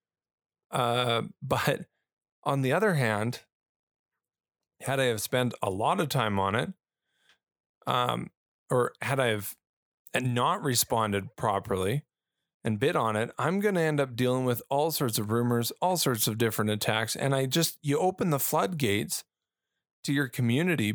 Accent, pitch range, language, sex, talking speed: American, 115-150 Hz, English, male, 150 wpm